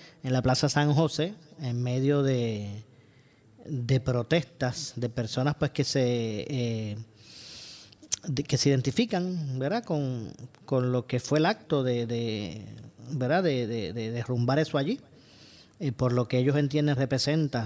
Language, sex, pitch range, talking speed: Spanish, male, 125-150 Hz, 150 wpm